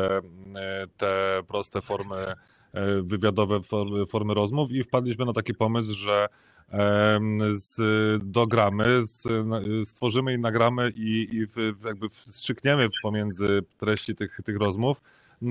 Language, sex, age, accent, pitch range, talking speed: Polish, male, 20-39, native, 100-115 Hz, 95 wpm